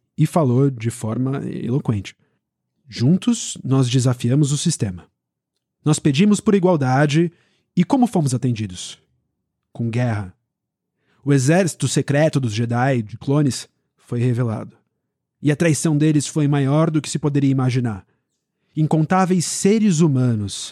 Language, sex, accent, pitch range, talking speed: Portuguese, male, Brazilian, 120-155 Hz, 125 wpm